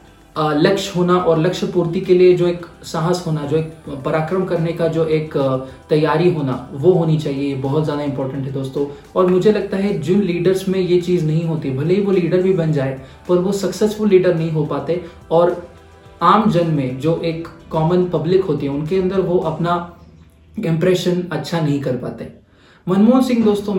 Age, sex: 20-39, male